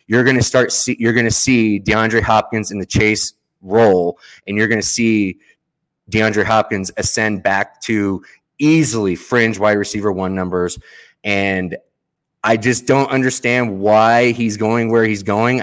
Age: 20-39